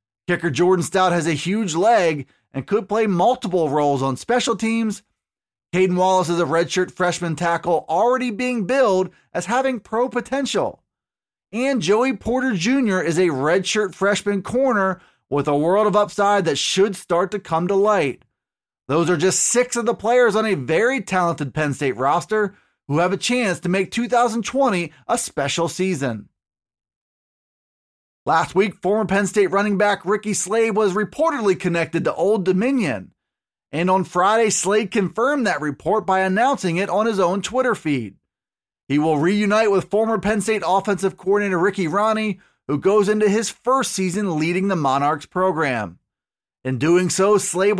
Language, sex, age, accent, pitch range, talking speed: English, male, 30-49, American, 170-220 Hz, 160 wpm